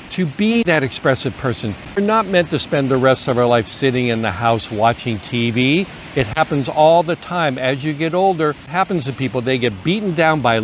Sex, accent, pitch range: male, American, 125-170 Hz